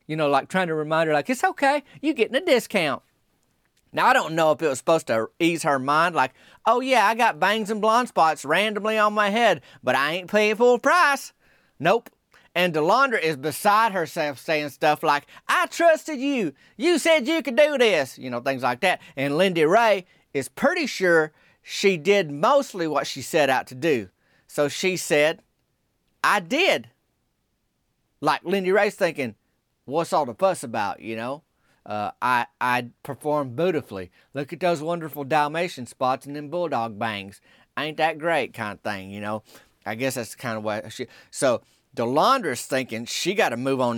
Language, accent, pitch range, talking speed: English, American, 135-200 Hz, 190 wpm